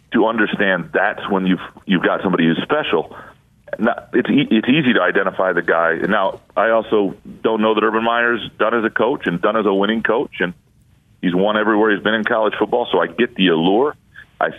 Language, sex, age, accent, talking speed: English, male, 40-59, American, 215 wpm